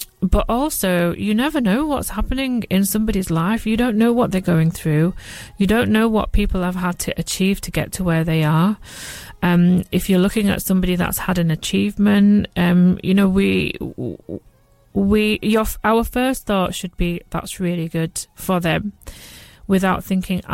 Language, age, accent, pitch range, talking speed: English, 30-49, British, 175-205 Hz, 175 wpm